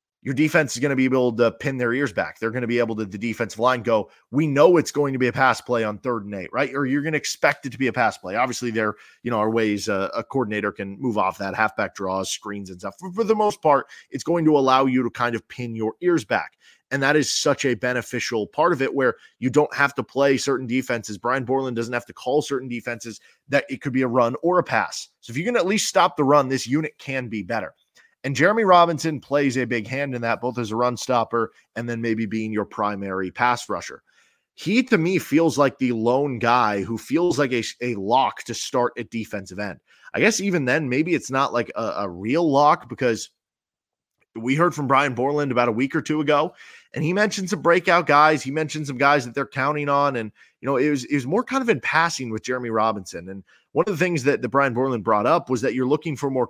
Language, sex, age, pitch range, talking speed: English, male, 20-39, 115-145 Hz, 255 wpm